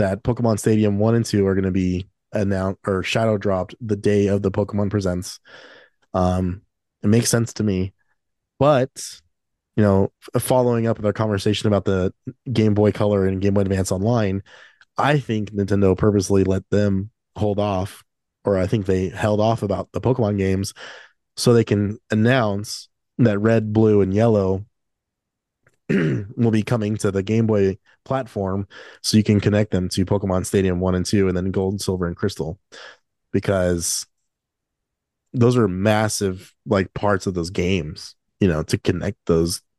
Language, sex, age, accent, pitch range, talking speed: English, male, 20-39, American, 95-110 Hz, 165 wpm